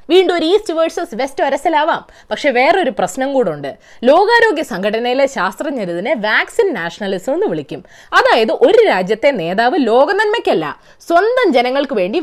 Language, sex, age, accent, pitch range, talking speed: Malayalam, female, 20-39, native, 235-340 Hz, 125 wpm